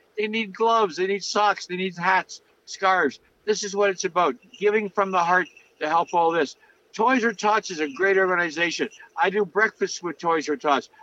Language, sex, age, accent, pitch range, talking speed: English, male, 60-79, American, 165-200 Hz, 200 wpm